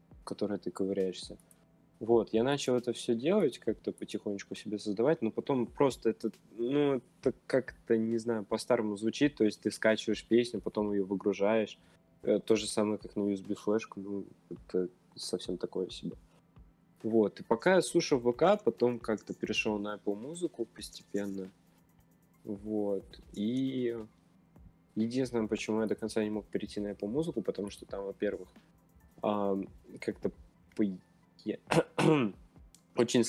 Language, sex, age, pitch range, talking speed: Russian, male, 20-39, 100-115 Hz, 140 wpm